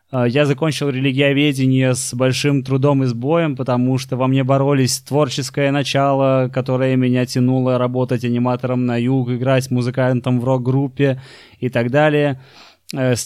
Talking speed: 135 wpm